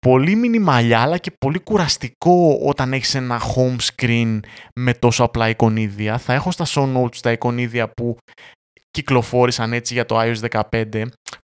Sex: male